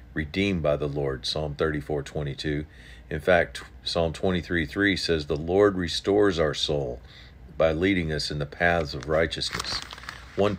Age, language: 50-69, English